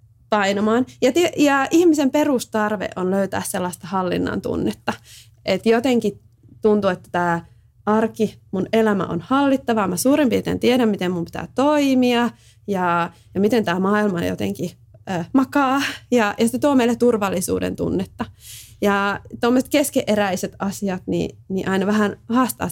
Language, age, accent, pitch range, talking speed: Finnish, 20-39, native, 180-260 Hz, 135 wpm